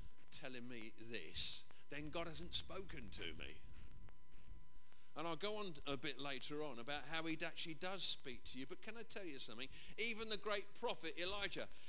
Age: 50-69